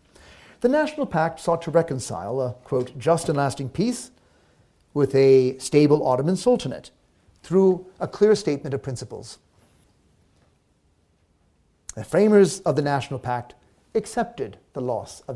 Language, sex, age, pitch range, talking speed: English, male, 40-59, 120-160 Hz, 130 wpm